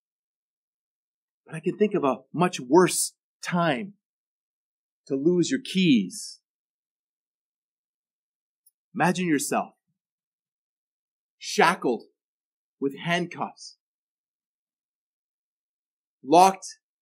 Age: 30-49